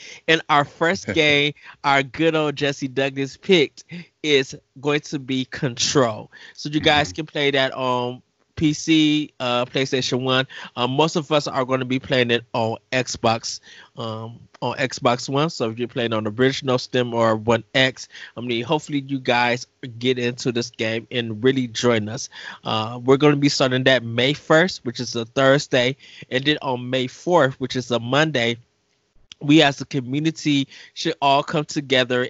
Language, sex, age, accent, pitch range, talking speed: English, male, 20-39, American, 120-140 Hz, 175 wpm